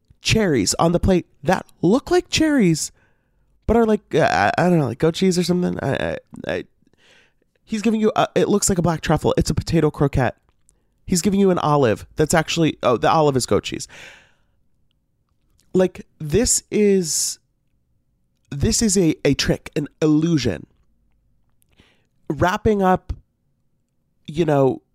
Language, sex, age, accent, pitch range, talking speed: English, male, 30-49, American, 135-180 Hz, 145 wpm